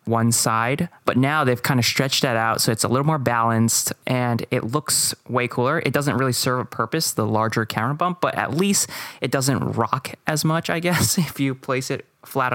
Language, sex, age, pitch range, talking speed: English, male, 20-39, 115-135 Hz, 220 wpm